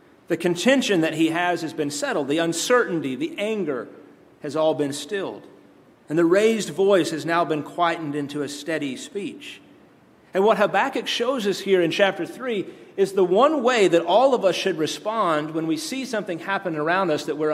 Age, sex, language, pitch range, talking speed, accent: 40-59, male, English, 155-215 Hz, 190 wpm, American